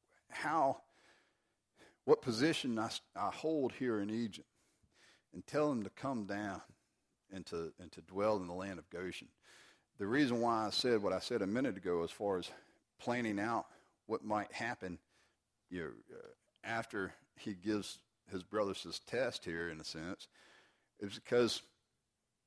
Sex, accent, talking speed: male, American, 160 wpm